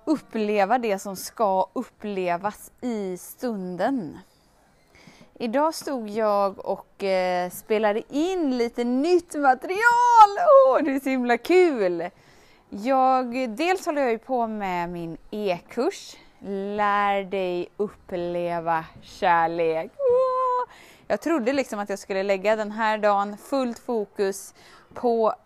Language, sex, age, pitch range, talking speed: Swedish, female, 20-39, 195-280 Hz, 115 wpm